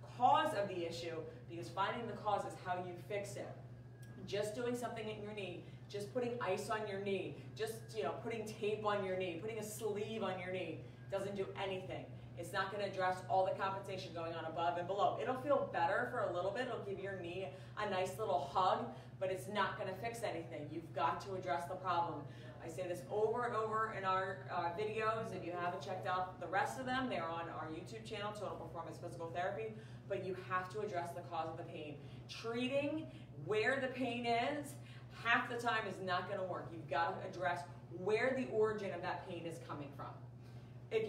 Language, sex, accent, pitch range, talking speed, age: English, female, American, 155-205 Hz, 215 wpm, 30-49